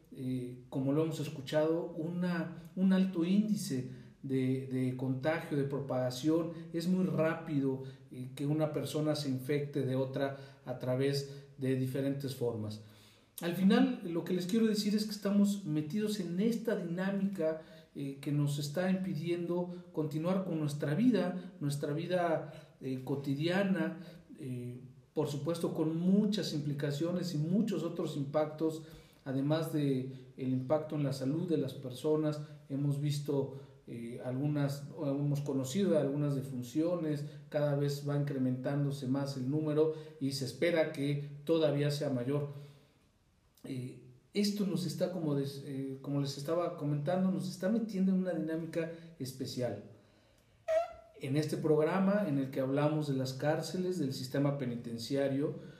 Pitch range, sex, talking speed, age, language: 135-170 Hz, male, 140 wpm, 40-59, Spanish